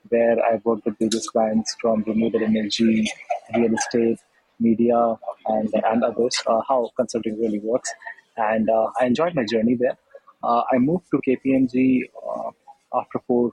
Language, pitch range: English, 110-125 Hz